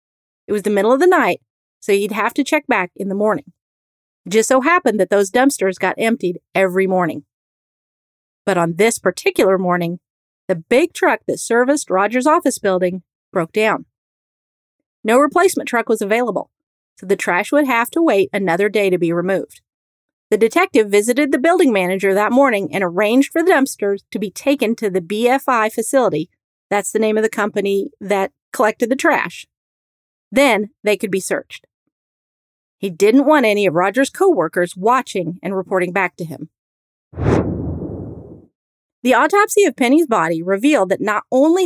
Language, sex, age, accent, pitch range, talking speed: English, female, 40-59, American, 190-275 Hz, 170 wpm